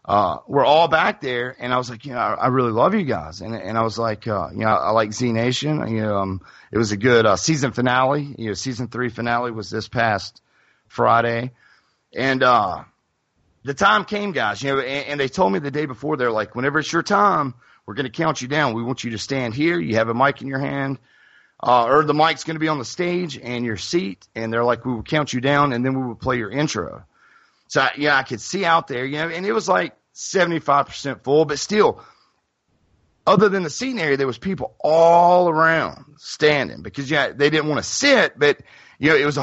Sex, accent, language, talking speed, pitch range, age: male, American, English, 240 wpm, 120-155 Hz, 30-49